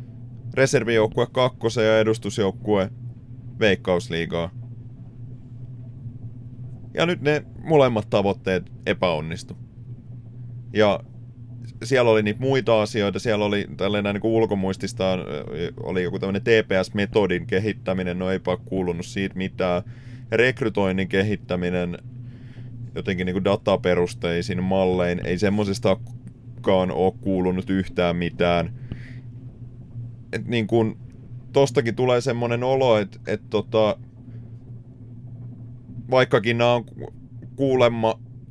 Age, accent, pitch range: 30-49, native, 100-120 Hz